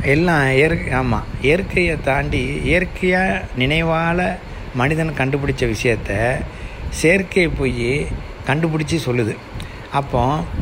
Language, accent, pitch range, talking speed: Tamil, native, 115-150 Hz, 85 wpm